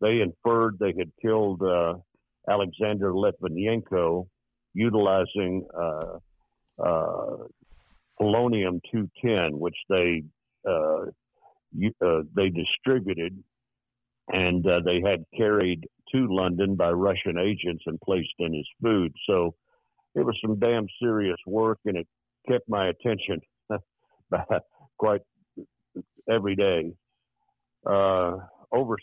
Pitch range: 90-110 Hz